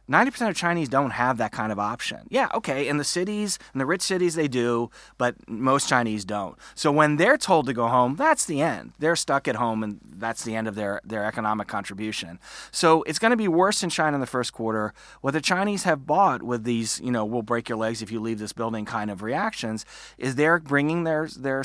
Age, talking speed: 30-49, 235 wpm